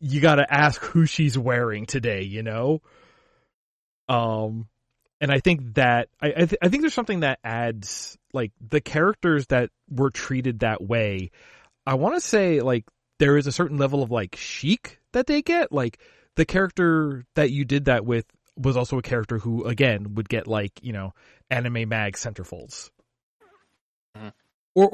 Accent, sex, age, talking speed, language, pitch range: American, male, 30-49, 170 wpm, English, 110-145 Hz